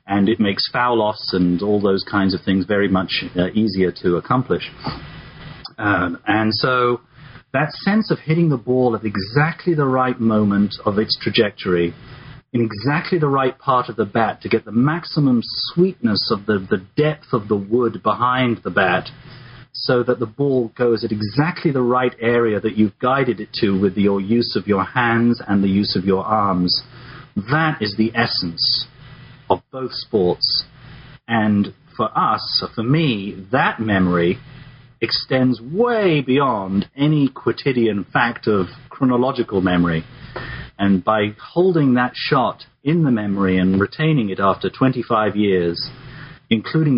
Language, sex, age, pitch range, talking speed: English, male, 40-59, 100-140 Hz, 155 wpm